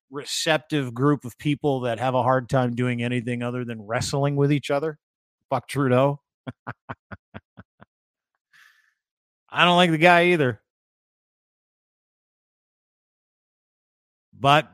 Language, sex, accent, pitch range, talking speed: English, male, American, 125-145 Hz, 105 wpm